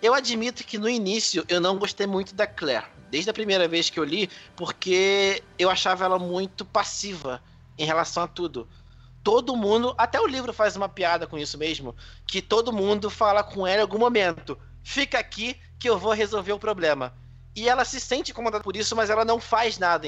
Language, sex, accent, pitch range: Portuguese, male, Brazilian, 160-220 Hz